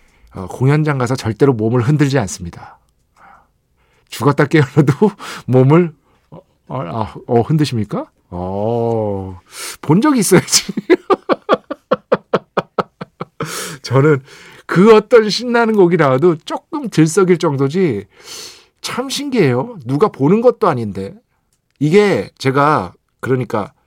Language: Korean